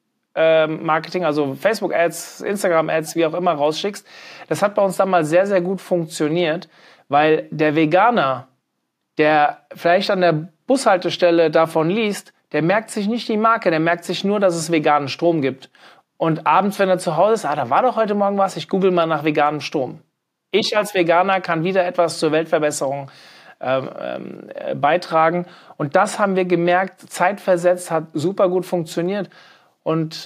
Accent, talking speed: German, 165 wpm